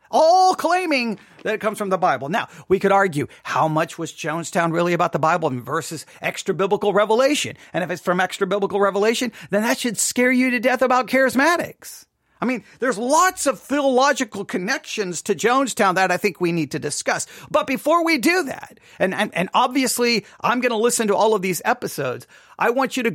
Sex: male